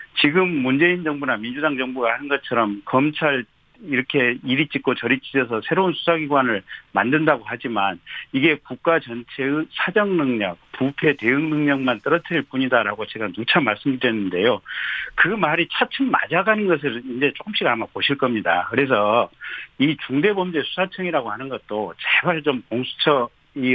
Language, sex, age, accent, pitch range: Korean, male, 50-69, native, 125-170 Hz